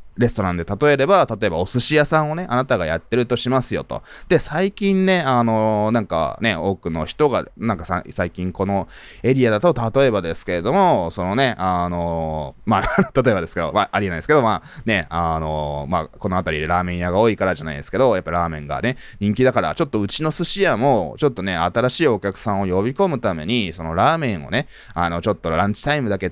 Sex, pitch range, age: male, 90-130 Hz, 20-39